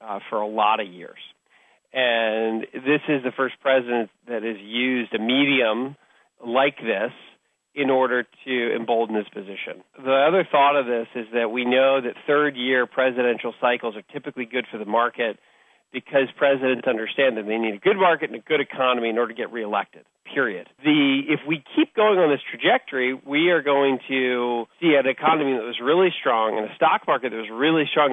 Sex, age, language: male, 40-59, English